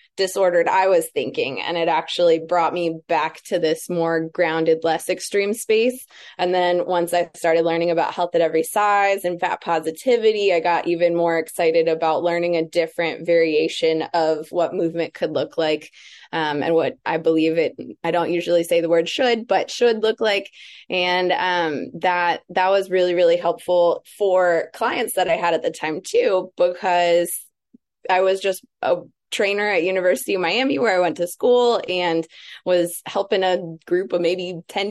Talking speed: 180 wpm